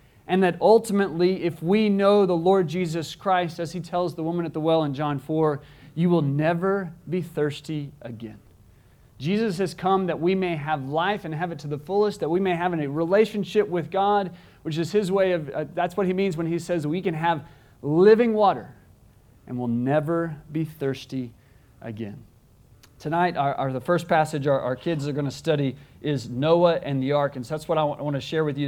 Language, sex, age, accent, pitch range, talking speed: English, male, 40-59, American, 140-175 Hz, 215 wpm